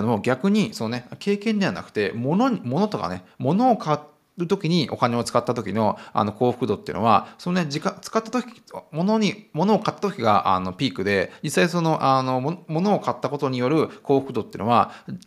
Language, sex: Japanese, male